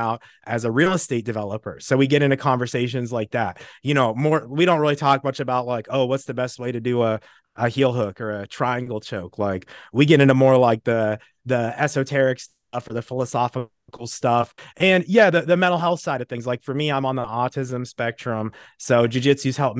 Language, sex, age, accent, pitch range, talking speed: English, male, 30-49, American, 115-135 Hz, 220 wpm